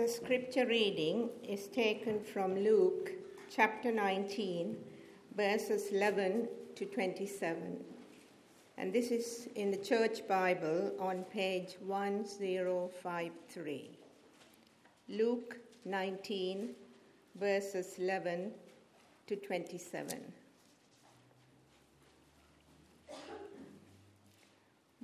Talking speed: 70 wpm